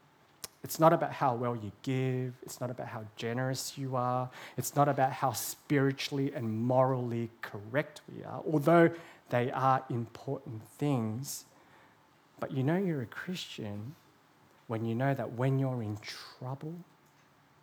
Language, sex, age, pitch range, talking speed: English, male, 30-49, 115-145 Hz, 145 wpm